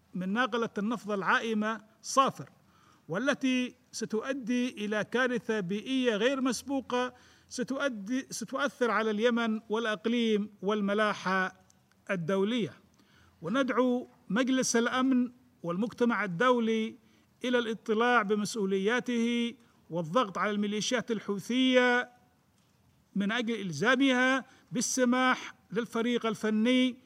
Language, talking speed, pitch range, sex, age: Arabic, 80 wpm, 215-255 Hz, male, 50-69